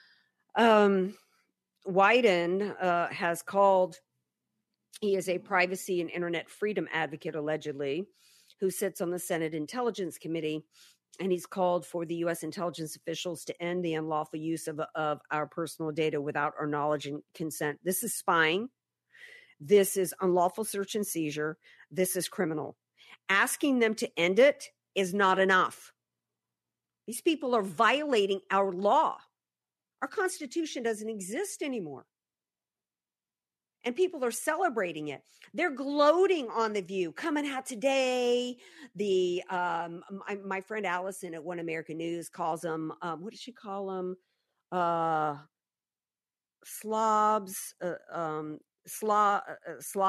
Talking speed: 135 wpm